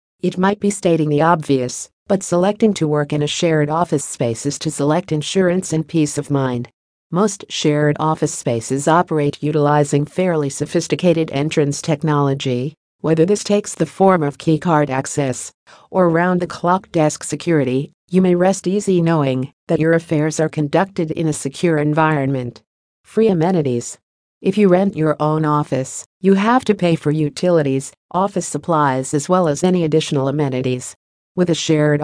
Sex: female